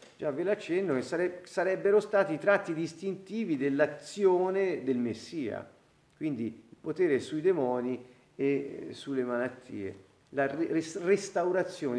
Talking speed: 110 wpm